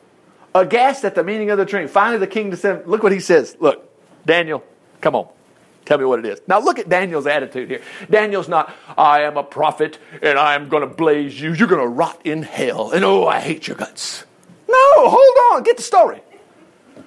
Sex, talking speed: male, 215 wpm